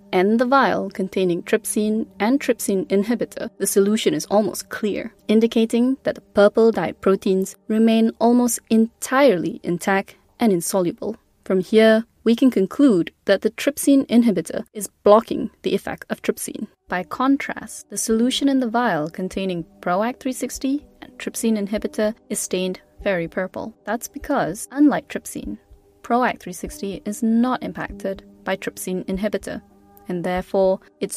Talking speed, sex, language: 135 wpm, female, English